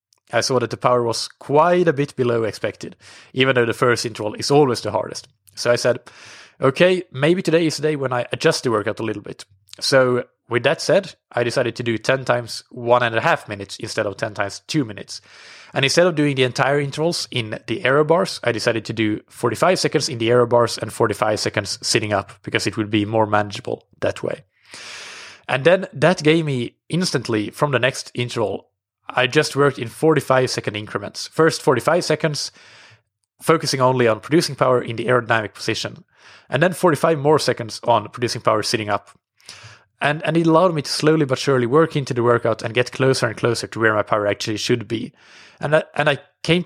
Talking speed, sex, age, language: 205 wpm, male, 20-39, English